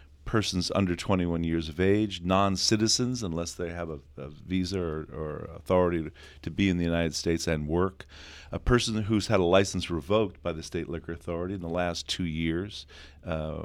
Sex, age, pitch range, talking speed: male, 40-59, 80-100 Hz, 185 wpm